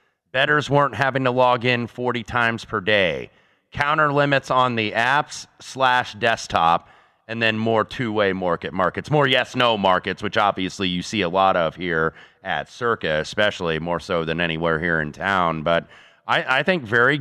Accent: American